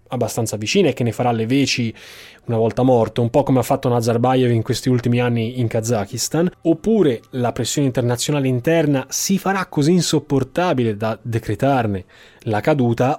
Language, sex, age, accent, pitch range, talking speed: Italian, male, 20-39, native, 120-160 Hz, 165 wpm